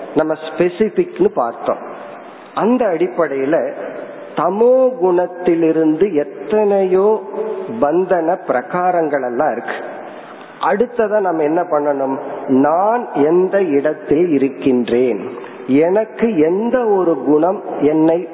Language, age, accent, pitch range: Tamil, 40-59, native, 150-225 Hz